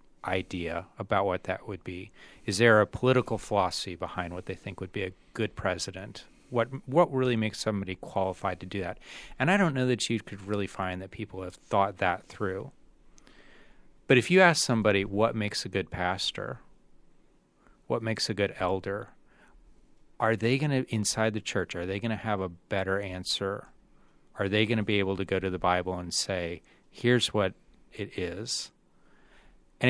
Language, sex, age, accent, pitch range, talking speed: English, male, 30-49, American, 95-125 Hz, 185 wpm